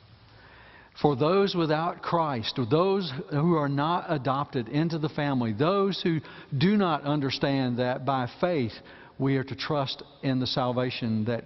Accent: American